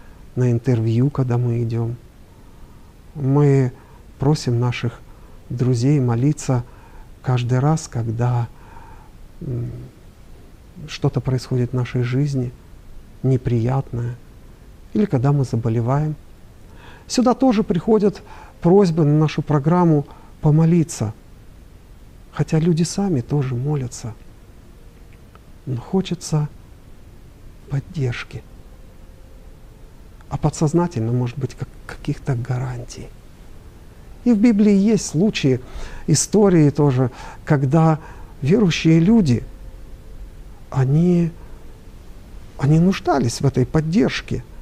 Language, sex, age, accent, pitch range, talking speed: Russian, male, 50-69, native, 120-155 Hz, 80 wpm